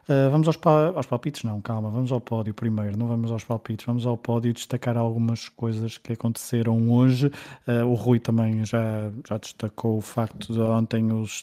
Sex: male